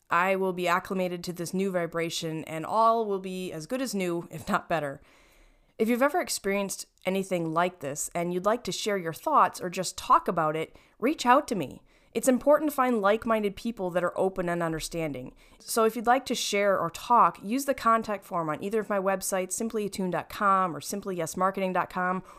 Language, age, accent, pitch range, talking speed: English, 20-39, American, 180-240 Hz, 195 wpm